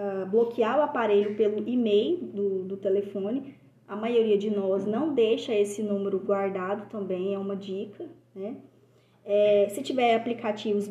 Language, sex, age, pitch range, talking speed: Portuguese, female, 20-39, 200-245 Hz, 140 wpm